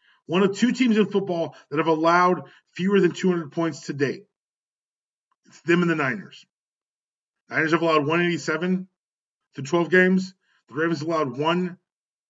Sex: male